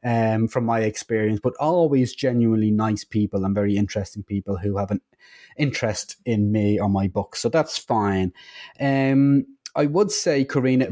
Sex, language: male, English